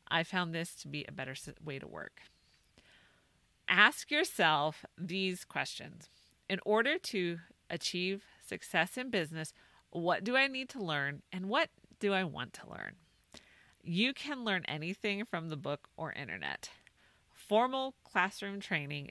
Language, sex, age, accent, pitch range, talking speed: English, female, 30-49, American, 155-210 Hz, 145 wpm